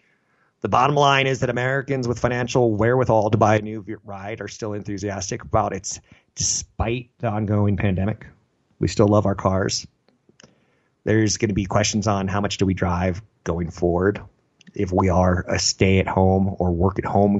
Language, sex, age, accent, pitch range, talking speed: English, male, 30-49, American, 100-125 Hz, 180 wpm